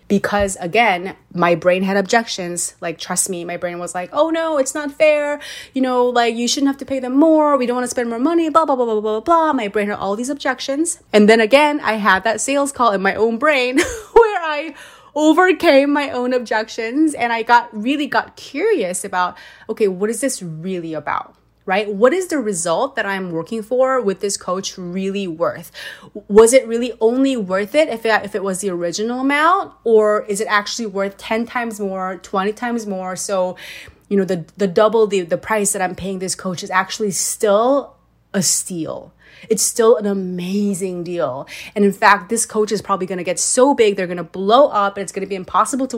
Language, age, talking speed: English, 30-49, 215 wpm